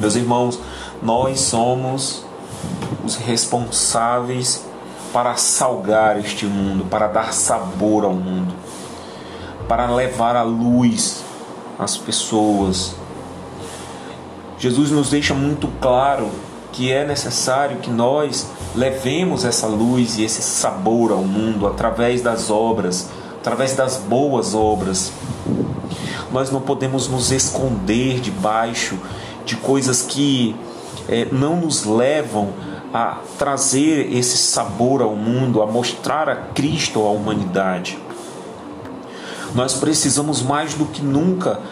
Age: 40-59